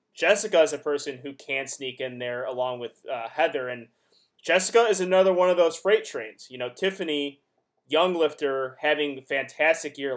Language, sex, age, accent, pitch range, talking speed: English, male, 20-39, American, 135-180 Hz, 175 wpm